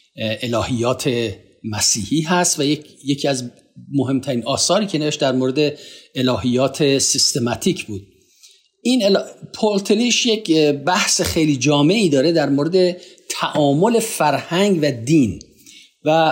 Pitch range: 140-185 Hz